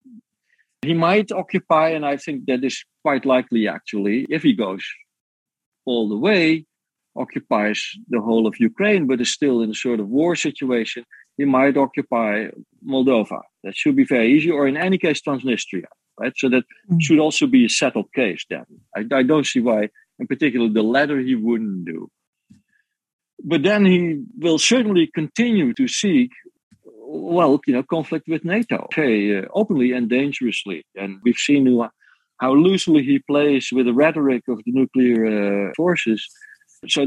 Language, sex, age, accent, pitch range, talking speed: English, male, 50-69, Dutch, 115-165 Hz, 165 wpm